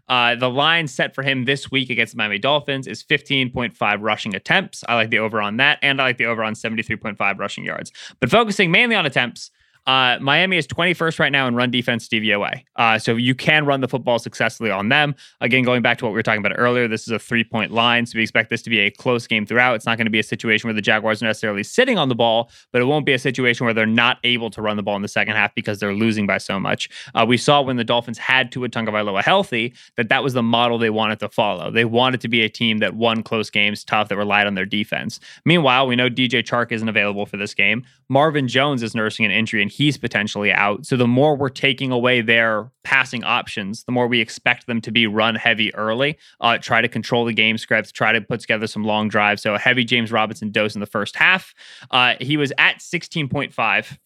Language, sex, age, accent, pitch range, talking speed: English, male, 20-39, American, 110-130 Hz, 250 wpm